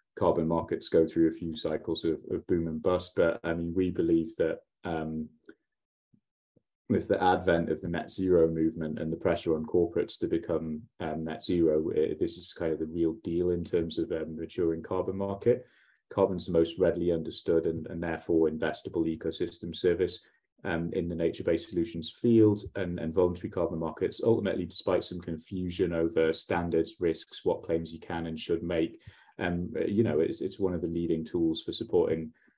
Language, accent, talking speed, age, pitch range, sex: English, British, 180 wpm, 30-49, 80-90 Hz, male